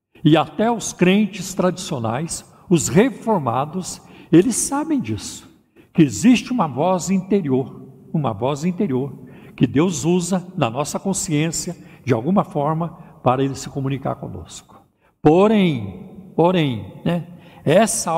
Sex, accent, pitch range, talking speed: male, Brazilian, 145-190 Hz, 120 wpm